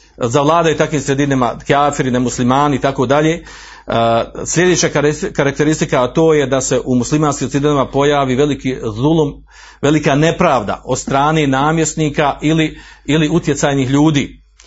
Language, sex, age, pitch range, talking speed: Croatian, male, 50-69, 130-160 Hz, 115 wpm